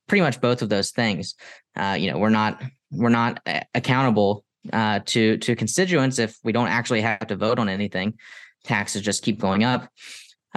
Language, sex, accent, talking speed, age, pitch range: English, male, American, 185 wpm, 10-29, 110-130 Hz